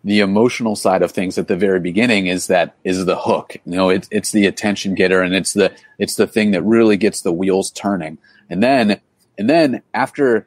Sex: male